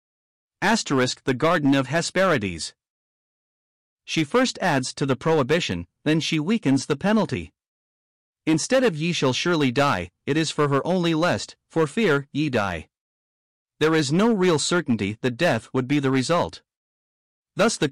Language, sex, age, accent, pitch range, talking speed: English, male, 40-59, American, 130-170 Hz, 150 wpm